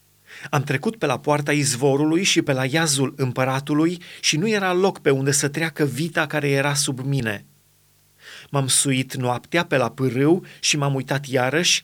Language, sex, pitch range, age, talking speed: Romanian, male, 140-175 Hz, 30-49, 170 wpm